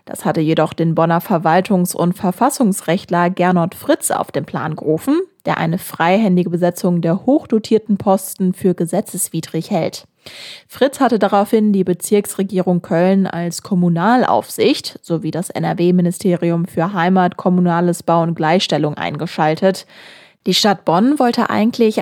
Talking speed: 130 wpm